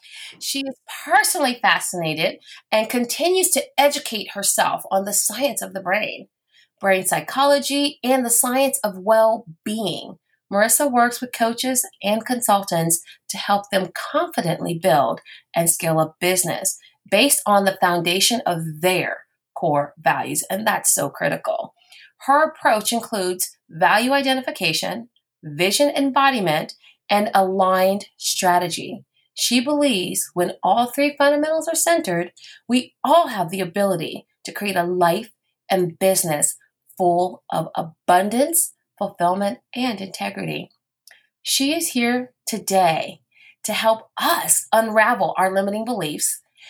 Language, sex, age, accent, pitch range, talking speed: English, female, 30-49, American, 185-270 Hz, 120 wpm